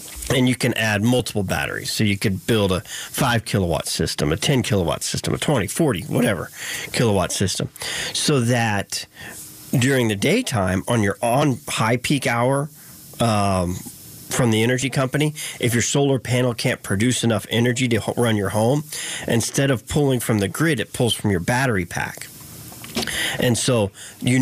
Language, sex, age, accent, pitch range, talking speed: English, male, 40-59, American, 105-130 Hz, 160 wpm